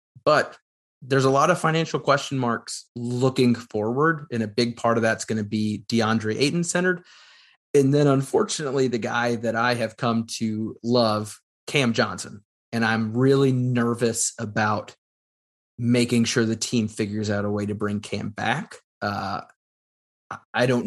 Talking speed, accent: 155 wpm, American